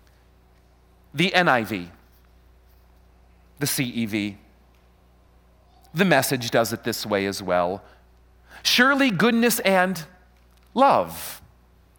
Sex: male